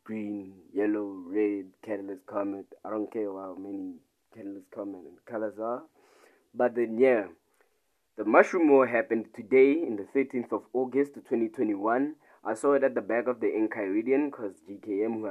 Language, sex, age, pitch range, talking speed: English, male, 20-39, 110-145 Hz, 170 wpm